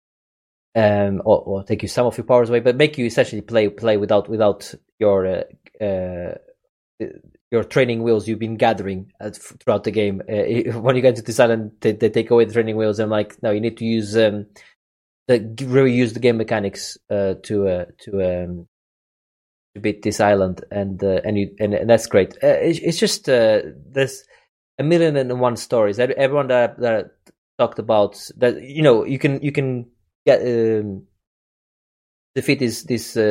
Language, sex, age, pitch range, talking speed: English, male, 20-39, 105-125 Hz, 190 wpm